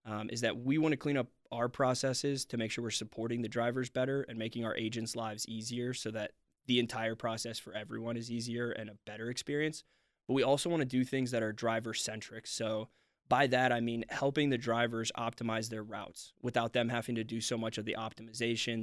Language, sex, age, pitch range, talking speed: English, male, 20-39, 110-125 Hz, 220 wpm